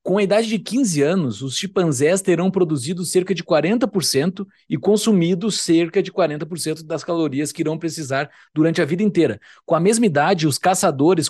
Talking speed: 175 wpm